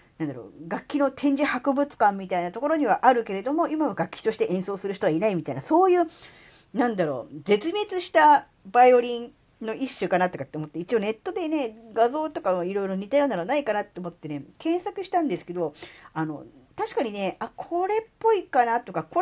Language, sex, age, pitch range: Japanese, female, 40-59, 170-285 Hz